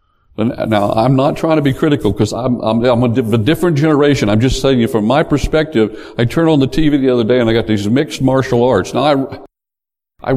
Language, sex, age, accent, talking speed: English, male, 60-79, American, 245 wpm